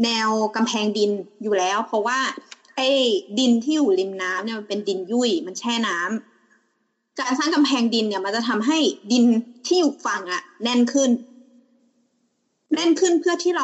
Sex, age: female, 20-39